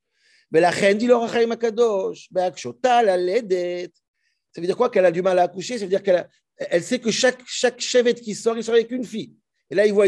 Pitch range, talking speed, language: 185-250 Hz, 215 wpm, French